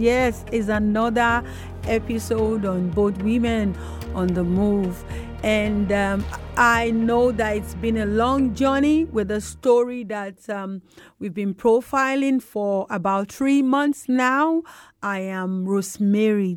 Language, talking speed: English, 130 wpm